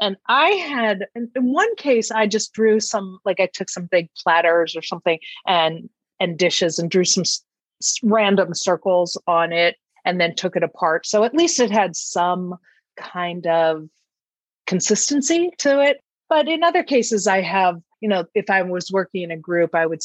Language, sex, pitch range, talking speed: English, female, 170-220 Hz, 190 wpm